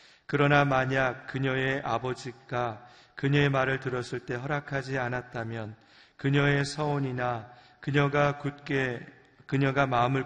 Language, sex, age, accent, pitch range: Korean, male, 40-59, native, 125-140 Hz